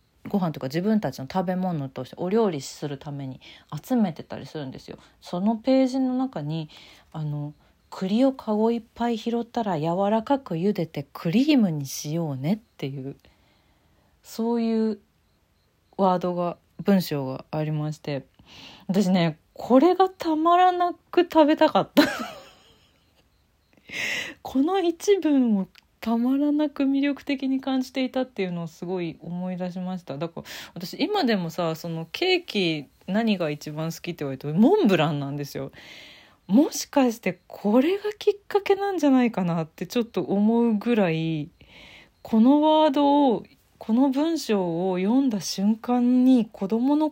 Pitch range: 165-260 Hz